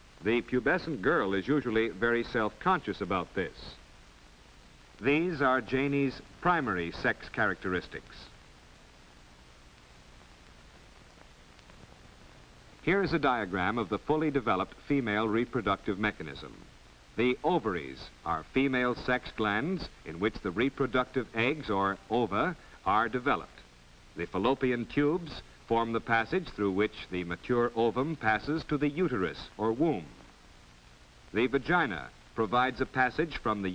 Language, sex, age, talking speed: English, male, 60-79, 115 wpm